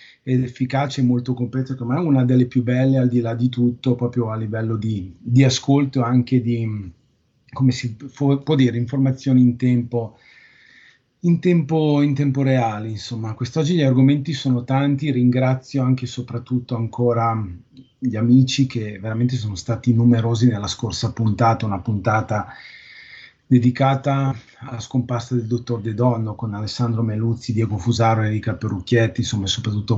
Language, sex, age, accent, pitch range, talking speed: Italian, male, 30-49, native, 115-130 Hz, 150 wpm